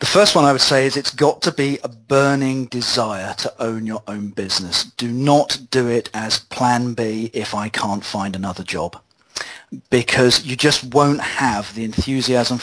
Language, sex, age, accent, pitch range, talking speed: English, male, 40-59, British, 110-135 Hz, 185 wpm